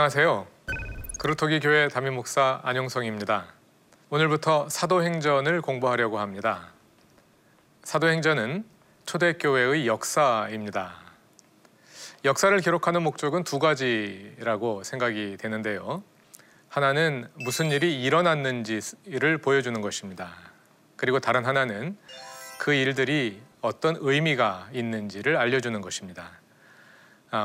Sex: male